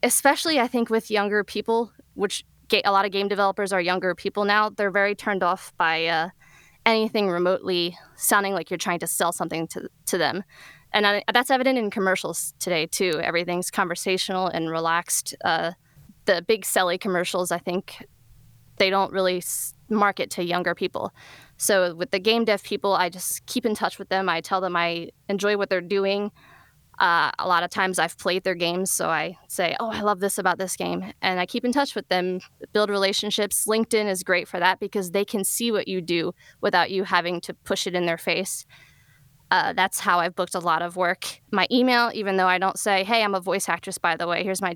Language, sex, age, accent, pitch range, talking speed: English, female, 20-39, American, 175-205 Hz, 210 wpm